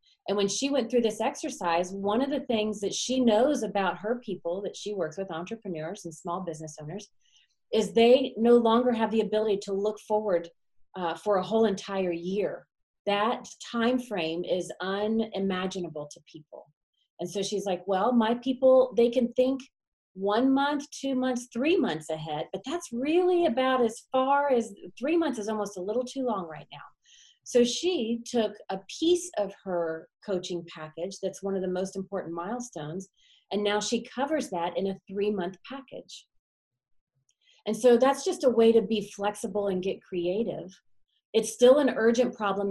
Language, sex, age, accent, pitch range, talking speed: English, female, 30-49, American, 185-240 Hz, 175 wpm